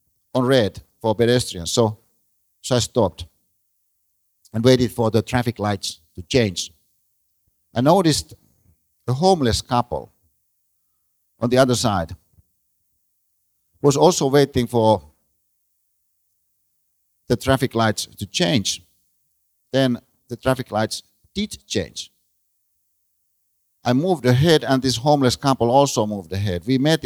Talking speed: 115 wpm